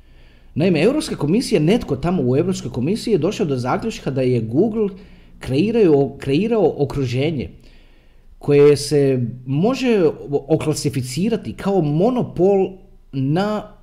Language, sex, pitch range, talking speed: Croatian, male, 130-200 Hz, 110 wpm